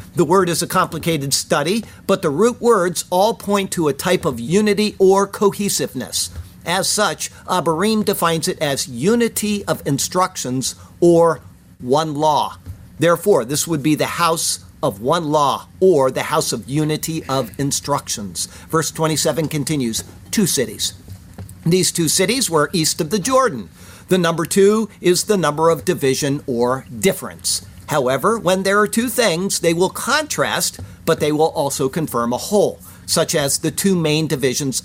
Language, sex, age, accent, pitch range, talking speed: English, male, 50-69, American, 135-190 Hz, 160 wpm